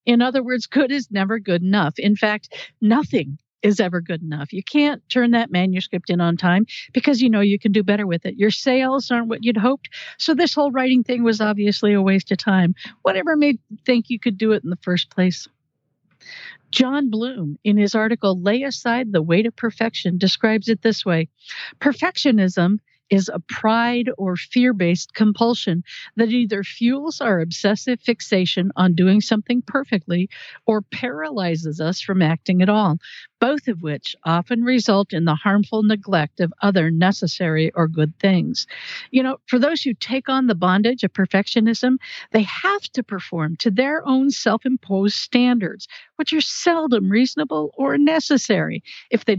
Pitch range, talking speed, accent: 185-250 Hz, 175 wpm, American